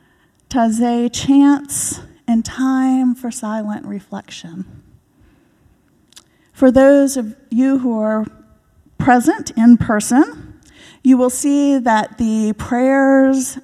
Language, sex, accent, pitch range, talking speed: English, female, American, 205-250 Hz, 95 wpm